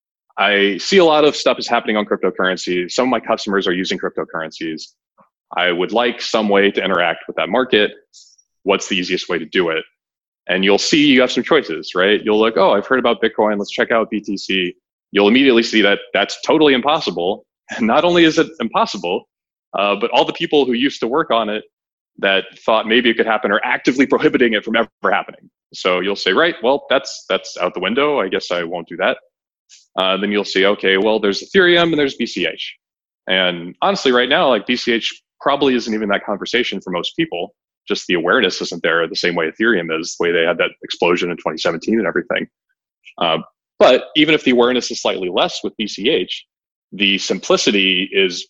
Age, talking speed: 20-39, 205 wpm